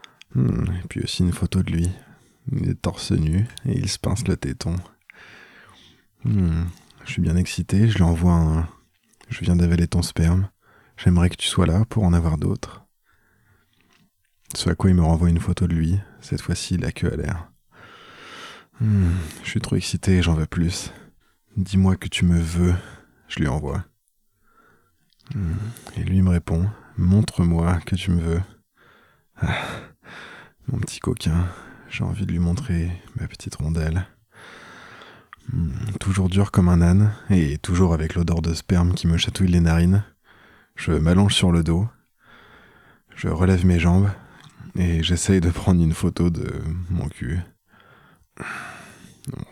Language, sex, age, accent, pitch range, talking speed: French, male, 20-39, French, 85-100 Hz, 155 wpm